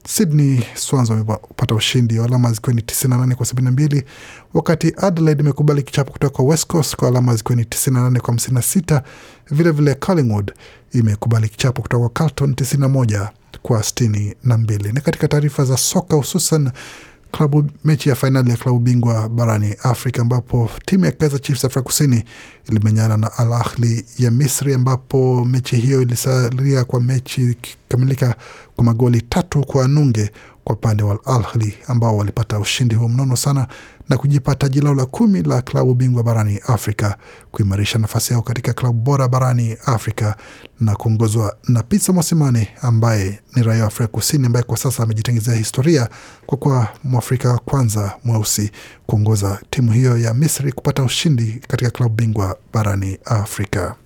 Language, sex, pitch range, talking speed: Swahili, male, 115-140 Hz, 150 wpm